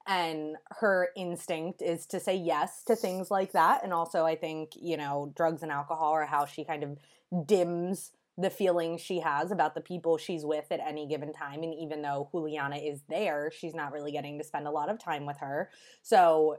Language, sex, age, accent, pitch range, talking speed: English, female, 20-39, American, 155-185 Hz, 210 wpm